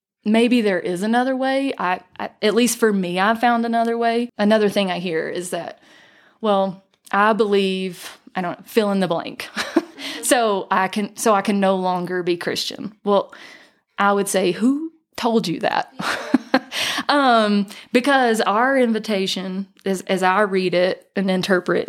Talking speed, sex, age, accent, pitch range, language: 160 wpm, female, 20-39, American, 185-245 Hz, English